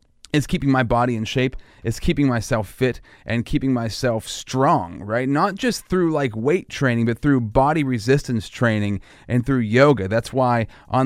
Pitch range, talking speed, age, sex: 110-140 Hz, 175 wpm, 30-49, male